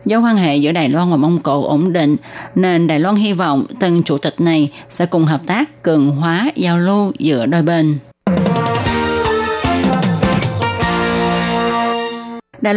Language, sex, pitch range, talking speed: Vietnamese, female, 155-220 Hz, 150 wpm